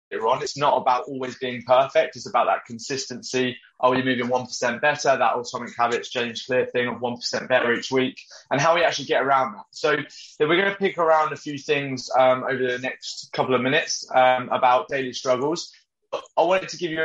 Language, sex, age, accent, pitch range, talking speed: English, male, 20-39, British, 125-145 Hz, 205 wpm